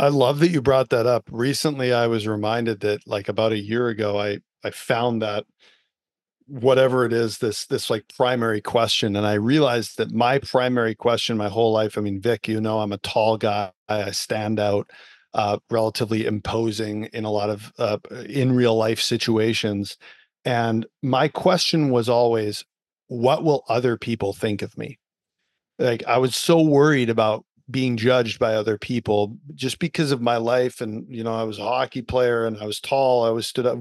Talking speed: 190 wpm